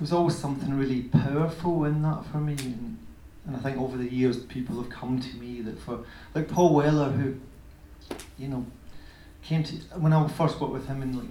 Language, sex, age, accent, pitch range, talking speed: English, male, 40-59, British, 120-145 Hz, 200 wpm